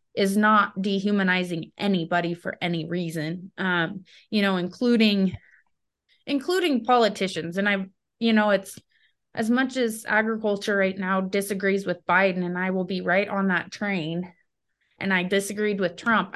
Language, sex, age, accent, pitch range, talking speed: English, female, 20-39, American, 185-215 Hz, 145 wpm